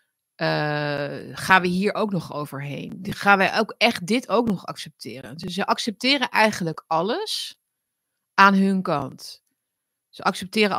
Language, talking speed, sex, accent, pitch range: Dutch, 145 wpm, female, Dutch, 155-190 Hz